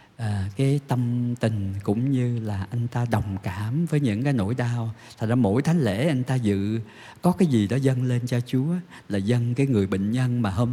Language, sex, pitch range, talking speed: Vietnamese, male, 105-130 Hz, 225 wpm